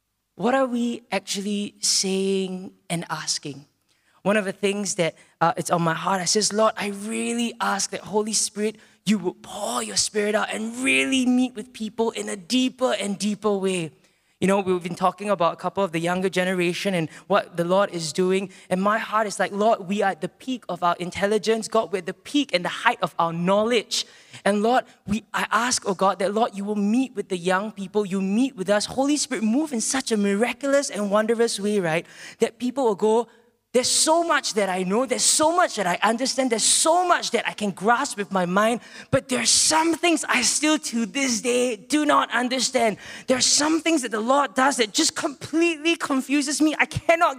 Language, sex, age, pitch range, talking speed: English, male, 20-39, 195-255 Hz, 215 wpm